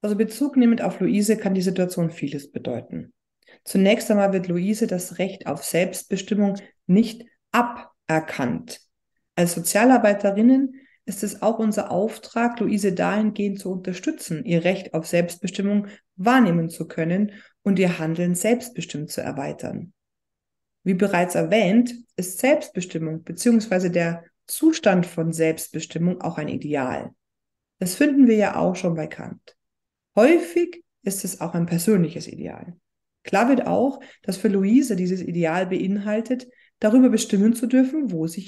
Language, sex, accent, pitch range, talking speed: German, female, German, 180-235 Hz, 135 wpm